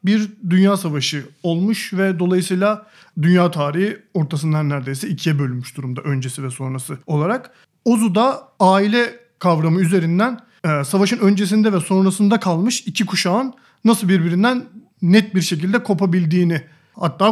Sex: male